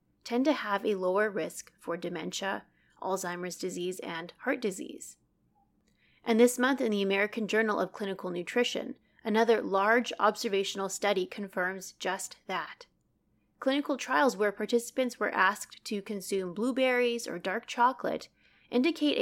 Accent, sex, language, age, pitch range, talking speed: American, female, English, 30-49, 185-245 Hz, 135 wpm